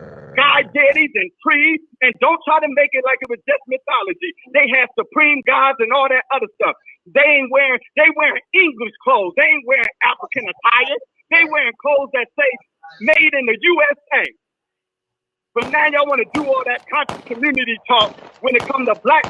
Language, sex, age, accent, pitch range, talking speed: English, male, 40-59, American, 255-320 Hz, 185 wpm